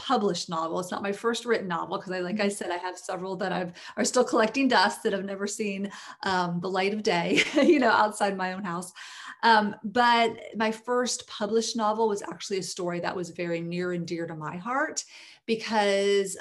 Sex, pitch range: female, 175-225 Hz